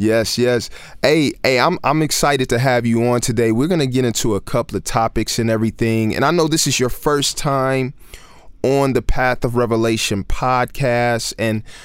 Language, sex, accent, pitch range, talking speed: English, male, American, 110-130 Hz, 190 wpm